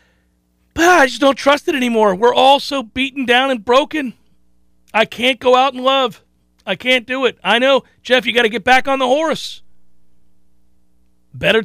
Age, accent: 40-59, American